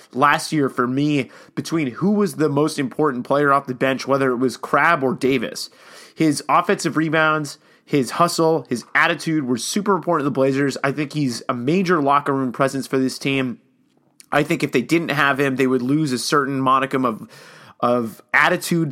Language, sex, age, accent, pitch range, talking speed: English, male, 20-39, American, 135-160 Hz, 190 wpm